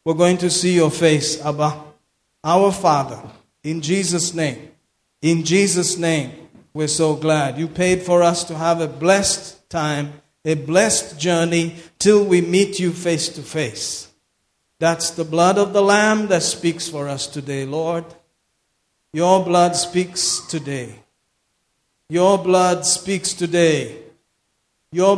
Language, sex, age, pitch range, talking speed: English, male, 50-69, 150-180 Hz, 140 wpm